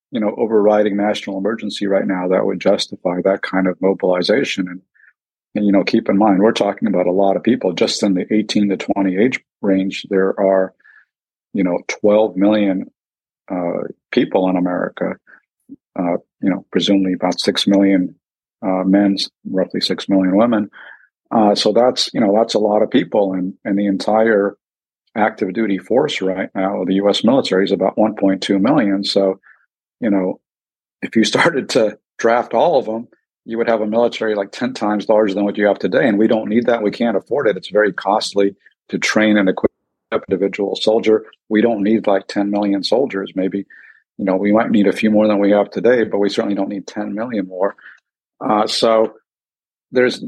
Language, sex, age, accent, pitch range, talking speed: English, male, 50-69, American, 95-105 Hz, 195 wpm